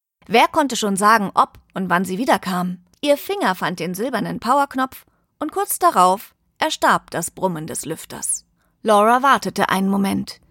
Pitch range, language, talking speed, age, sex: 185-300 Hz, German, 155 wpm, 30-49, female